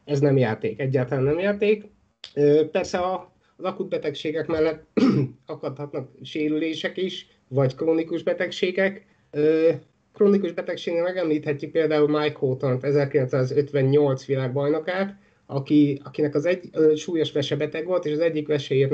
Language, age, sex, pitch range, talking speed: Hungarian, 30-49, male, 140-170 Hz, 115 wpm